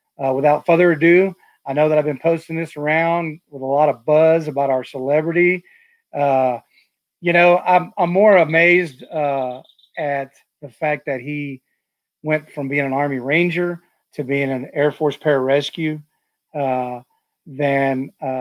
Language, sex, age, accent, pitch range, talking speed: English, male, 40-59, American, 135-160 Hz, 155 wpm